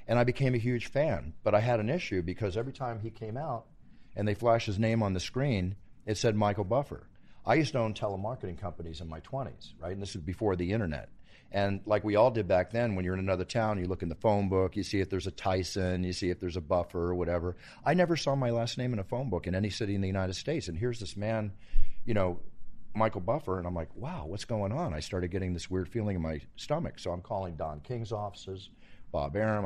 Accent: American